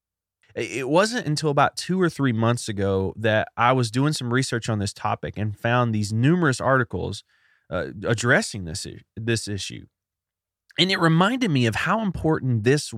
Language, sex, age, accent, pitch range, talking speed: English, male, 30-49, American, 95-125 Hz, 165 wpm